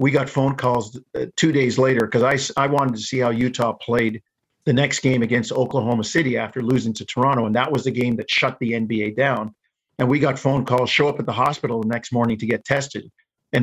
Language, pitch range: English, 125-150 Hz